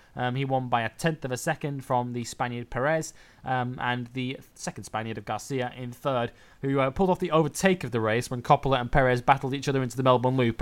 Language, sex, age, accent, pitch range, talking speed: English, male, 20-39, British, 120-155 Hz, 235 wpm